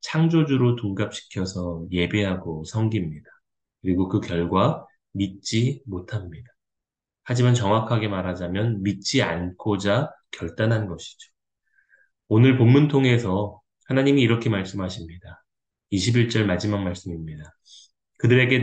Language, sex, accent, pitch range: Korean, male, native, 95-120 Hz